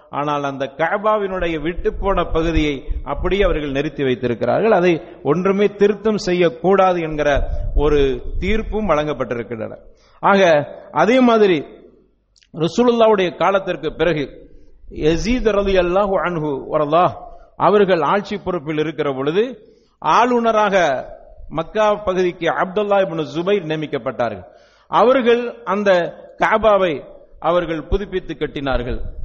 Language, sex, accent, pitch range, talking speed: English, male, Indian, 155-205 Hz, 70 wpm